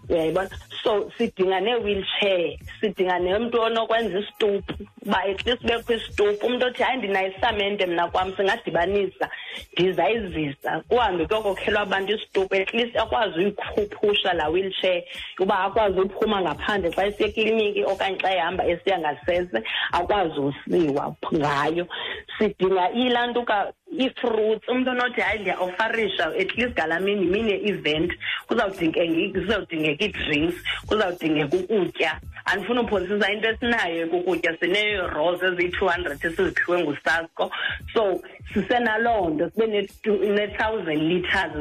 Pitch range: 180-230 Hz